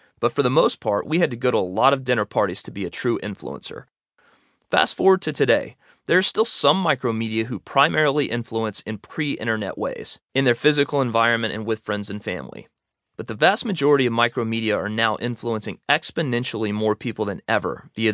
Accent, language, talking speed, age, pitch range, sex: American, English, 195 wpm, 30-49, 110-140 Hz, male